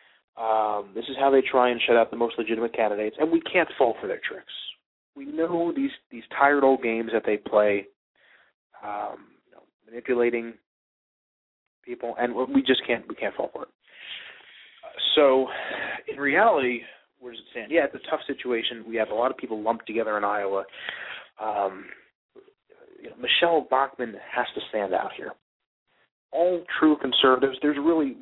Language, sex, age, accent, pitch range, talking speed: English, male, 30-49, American, 115-155 Hz, 170 wpm